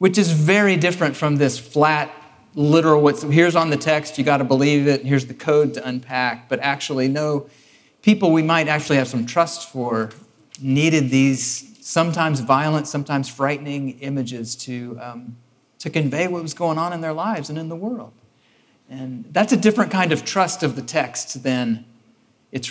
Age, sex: 40-59, male